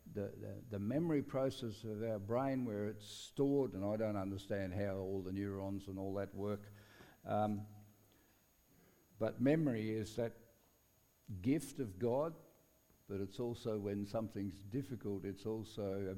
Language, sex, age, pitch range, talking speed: English, male, 60-79, 95-120 Hz, 145 wpm